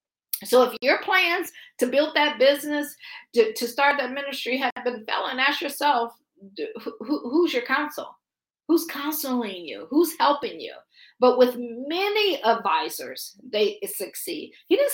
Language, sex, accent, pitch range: English, female, American, 230-305 Hz